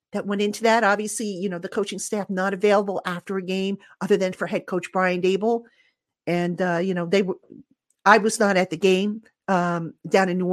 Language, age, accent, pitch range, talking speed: English, 50-69, American, 195-260 Hz, 215 wpm